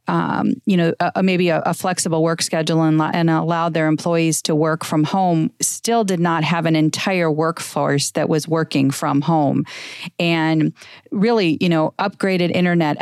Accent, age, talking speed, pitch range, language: American, 40-59, 170 wpm, 160-185 Hz, English